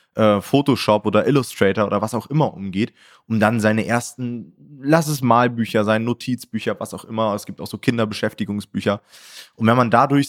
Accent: German